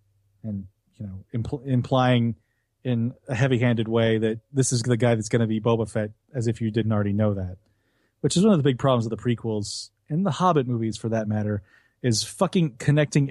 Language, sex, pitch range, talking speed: English, male, 105-135 Hz, 215 wpm